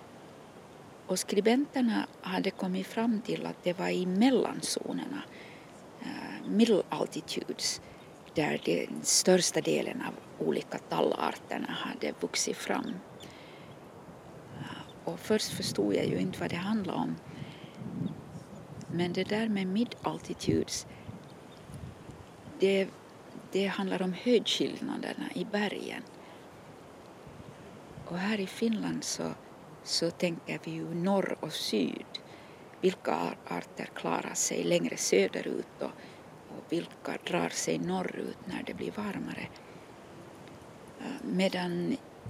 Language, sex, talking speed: English, female, 110 wpm